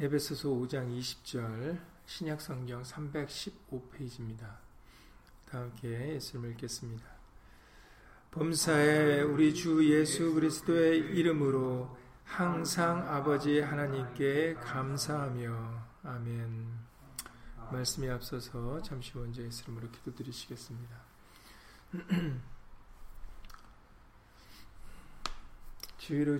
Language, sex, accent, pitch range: Korean, male, native, 115-140 Hz